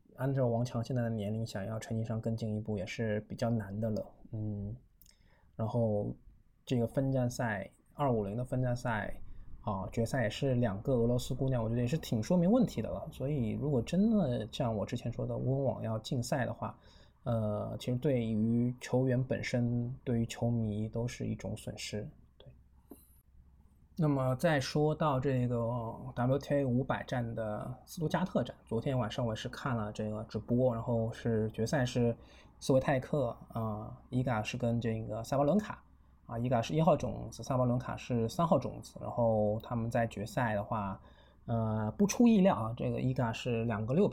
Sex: male